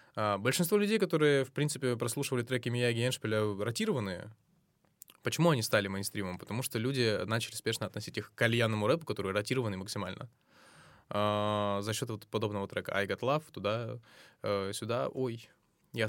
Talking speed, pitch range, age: 140 wpm, 105-135 Hz, 20-39